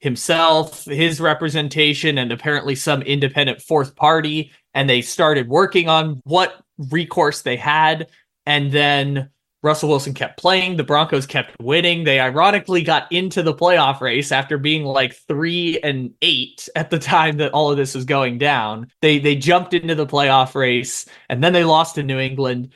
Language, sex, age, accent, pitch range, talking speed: English, male, 20-39, American, 130-160 Hz, 170 wpm